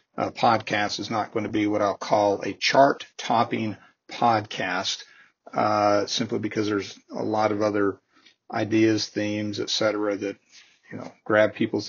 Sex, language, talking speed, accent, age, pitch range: male, English, 150 wpm, American, 40-59, 105-115 Hz